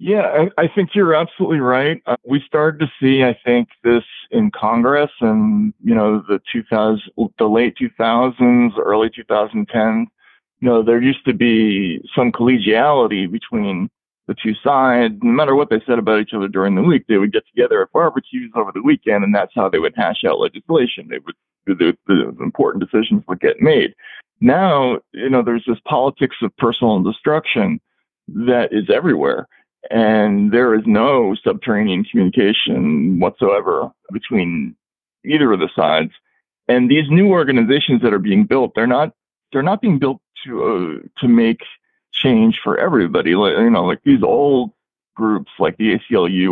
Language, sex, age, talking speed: English, male, 40-59, 170 wpm